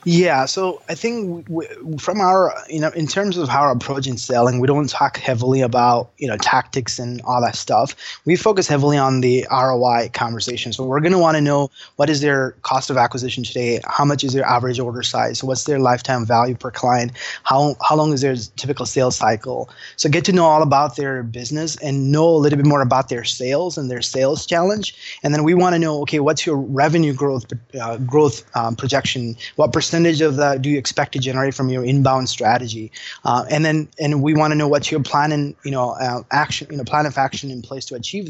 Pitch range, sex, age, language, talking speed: 130-155 Hz, male, 20-39, English, 225 wpm